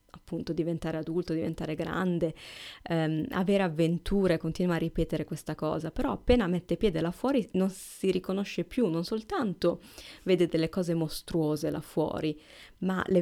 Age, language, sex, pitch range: 20-39, Italian, female, 160-185 Hz